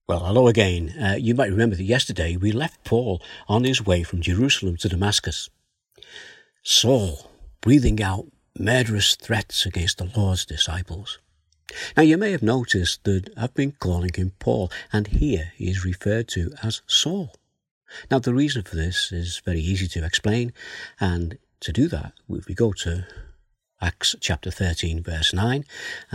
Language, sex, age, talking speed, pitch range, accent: English, male, 60-79, 160 wpm, 85-110 Hz, British